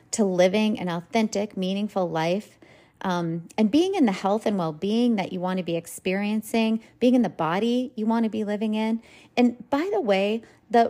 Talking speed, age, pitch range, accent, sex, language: 195 wpm, 30-49, 185-225 Hz, American, female, English